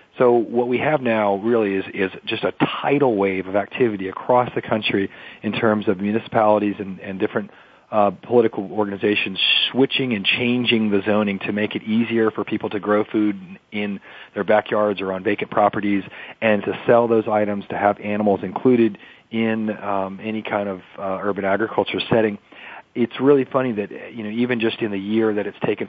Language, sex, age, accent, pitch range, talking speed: English, male, 40-59, American, 100-115 Hz, 185 wpm